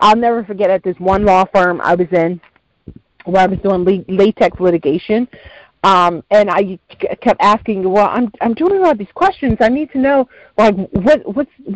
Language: English